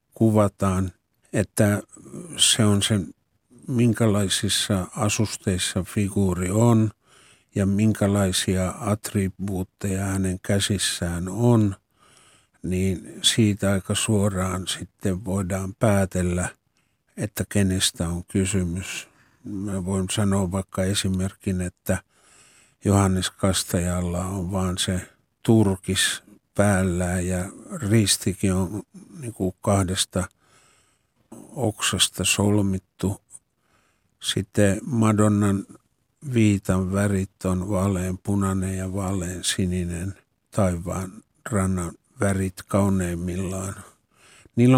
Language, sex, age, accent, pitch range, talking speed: Finnish, male, 50-69, native, 95-105 Hz, 80 wpm